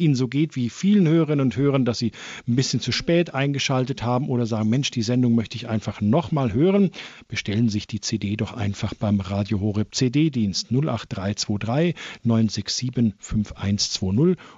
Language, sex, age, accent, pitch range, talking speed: German, male, 50-69, German, 105-135 Hz, 165 wpm